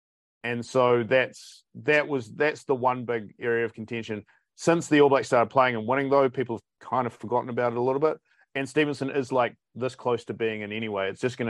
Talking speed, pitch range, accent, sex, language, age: 230 wpm, 105-130 Hz, Australian, male, English, 30-49